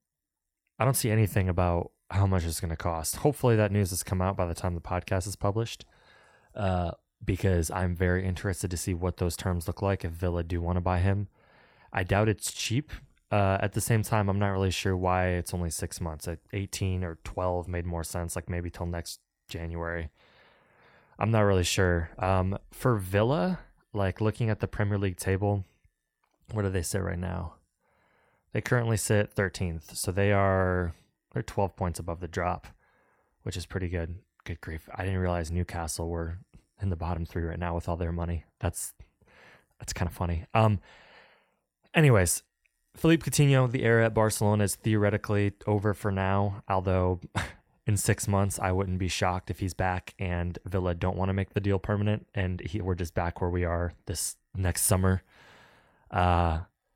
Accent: American